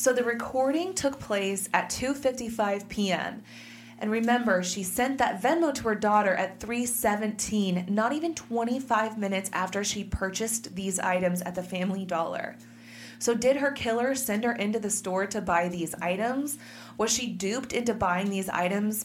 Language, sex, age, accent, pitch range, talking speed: English, female, 30-49, American, 180-230 Hz, 165 wpm